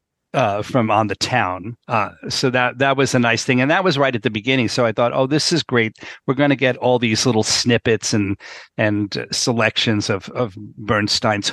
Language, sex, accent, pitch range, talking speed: English, male, American, 110-135 Hz, 215 wpm